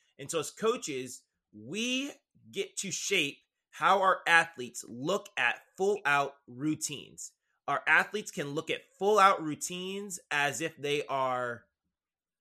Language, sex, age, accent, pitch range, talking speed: English, male, 30-49, American, 140-185 Hz, 125 wpm